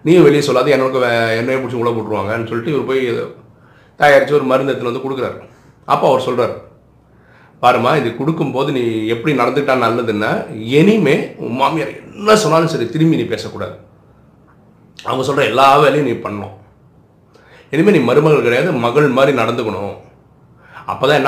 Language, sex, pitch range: Tamil, male, 105-135 Hz